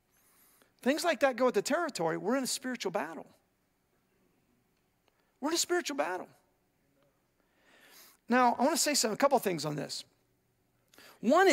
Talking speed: 145 wpm